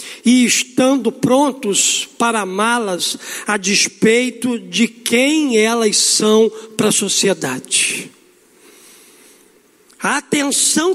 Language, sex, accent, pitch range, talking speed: Portuguese, male, Brazilian, 230-315 Hz, 90 wpm